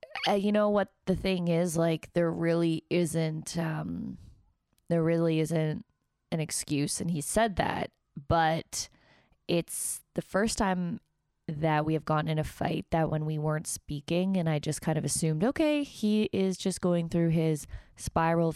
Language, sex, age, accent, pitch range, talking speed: English, female, 20-39, American, 160-185 Hz, 170 wpm